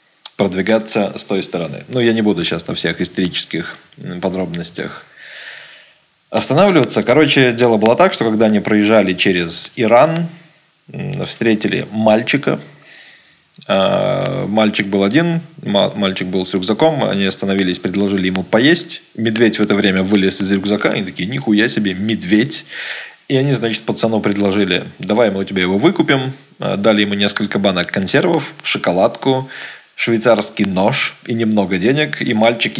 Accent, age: native, 20-39